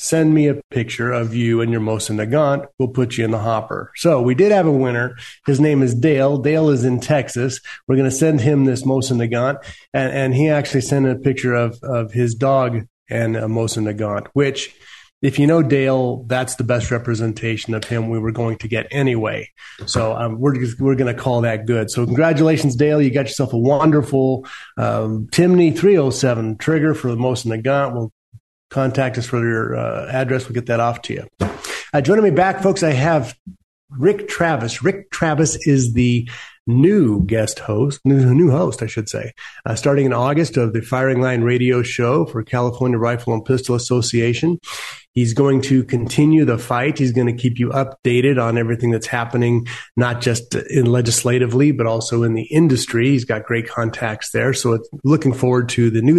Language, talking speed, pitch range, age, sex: English, 190 wpm, 115-140 Hz, 40-59, male